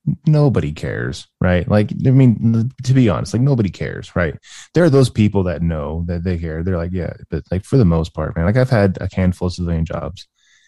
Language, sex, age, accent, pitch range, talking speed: English, male, 20-39, American, 85-100 Hz, 225 wpm